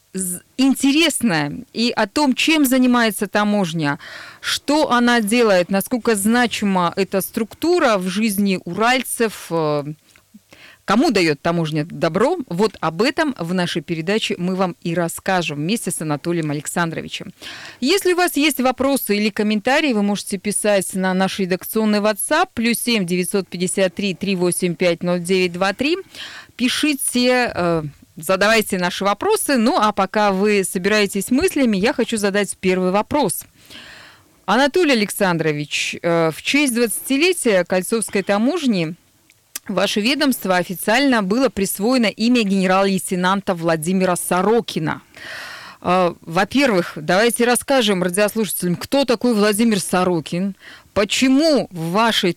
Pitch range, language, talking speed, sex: 180-240 Hz, Russian, 110 wpm, female